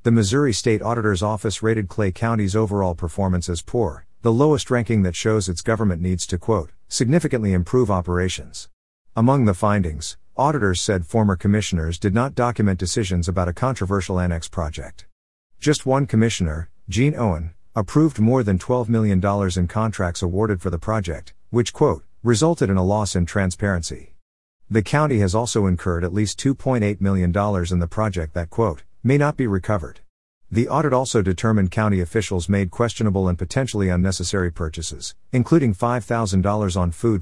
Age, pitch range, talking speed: 50-69, 90-115 Hz, 160 wpm